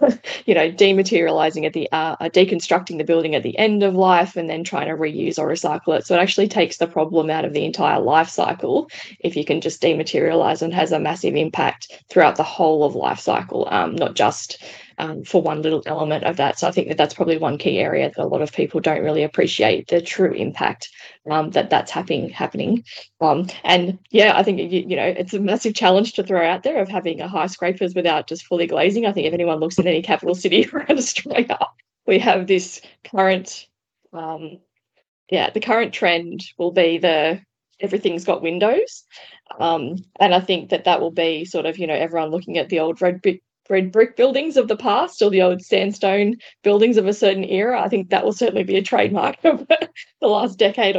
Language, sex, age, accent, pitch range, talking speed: English, female, 10-29, Australian, 170-200 Hz, 215 wpm